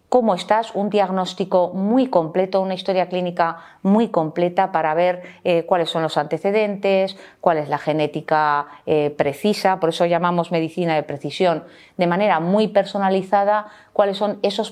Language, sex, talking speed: Spanish, female, 150 wpm